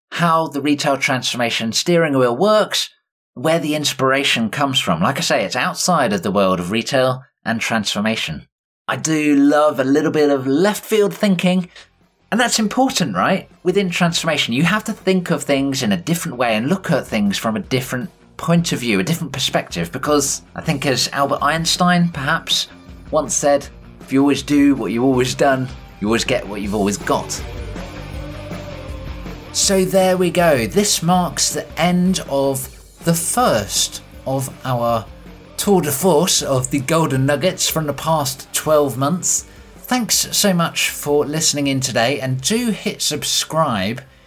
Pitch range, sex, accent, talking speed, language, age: 130-180 Hz, male, British, 165 wpm, English, 30-49